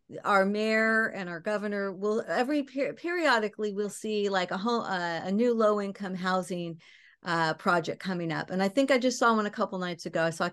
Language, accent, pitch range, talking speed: English, American, 180-215 Hz, 210 wpm